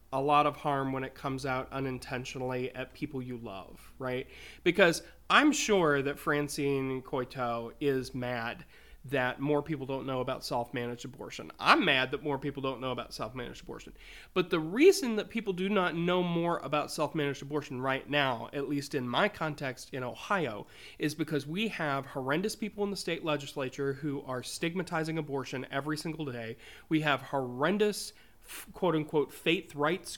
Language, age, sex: English, 30-49, male